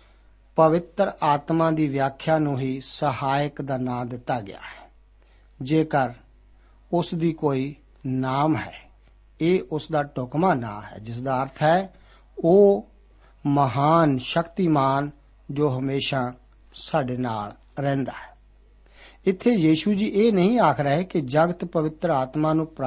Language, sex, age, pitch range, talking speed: Punjabi, male, 60-79, 135-175 Hz, 125 wpm